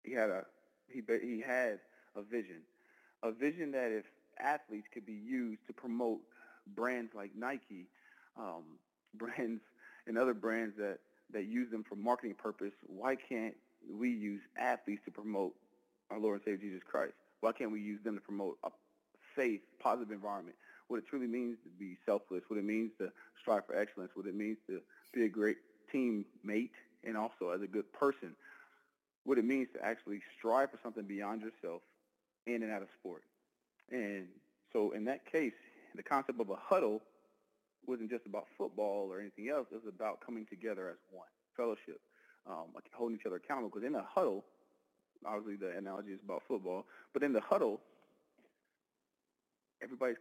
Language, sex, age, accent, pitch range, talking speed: English, male, 40-59, American, 105-120 Hz, 170 wpm